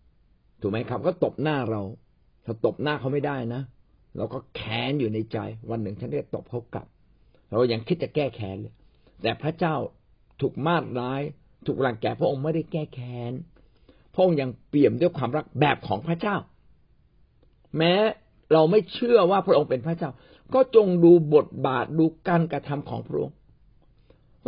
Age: 60-79